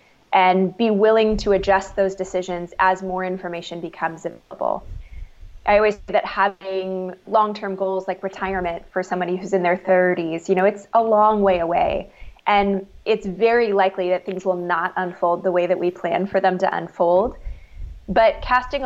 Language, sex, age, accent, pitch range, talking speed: English, female, 20-39, American, 180-210 Hz, 170 wpm